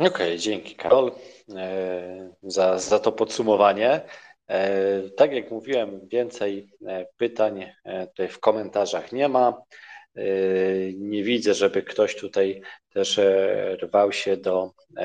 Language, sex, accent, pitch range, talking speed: Polish, male, native, 95-155 Hz, 105 wpm